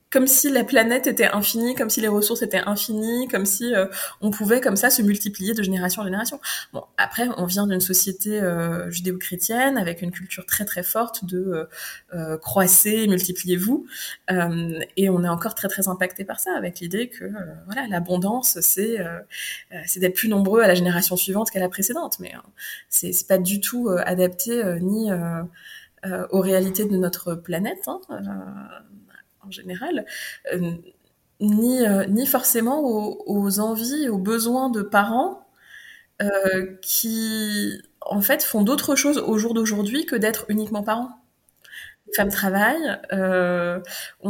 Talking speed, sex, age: 165 wpm, female, 20-39